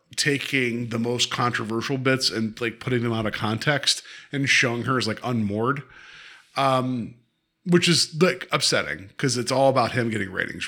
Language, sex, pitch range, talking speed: English, male, 115-145 Hz, 170 wpm